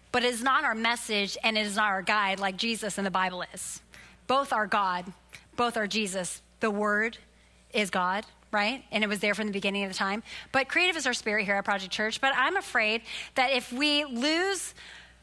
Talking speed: 215 wpm